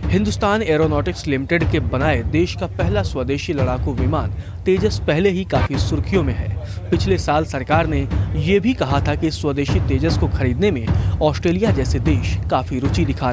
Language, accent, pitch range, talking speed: English, Indian, 95-130 Hz, 170 wpm